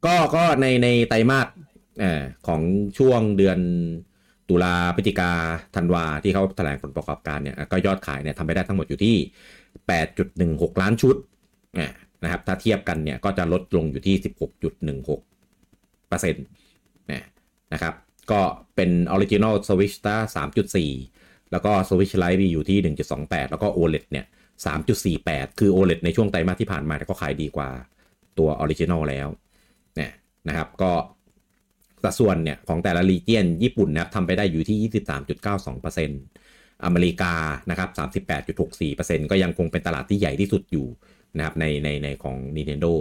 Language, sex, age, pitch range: Thai, male, 30-49, 80-100 Hz